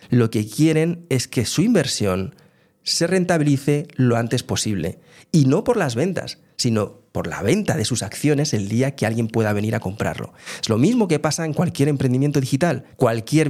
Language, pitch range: Spanish, 110-160 Hz